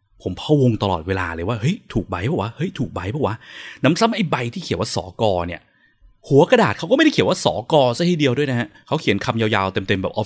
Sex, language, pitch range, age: male, Thai, 105-155 Hz, 20-39